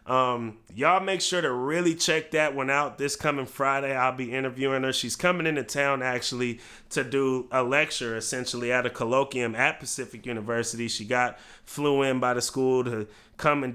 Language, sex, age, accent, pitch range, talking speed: English, male, 30-49, American, 120-135 Hz, 190 wpm